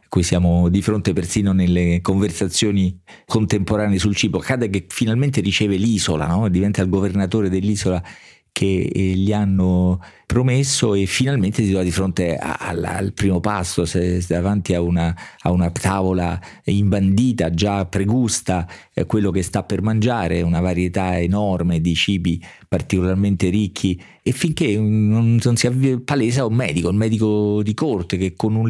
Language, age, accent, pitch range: Italian, 40-59, native, 95-120 Hz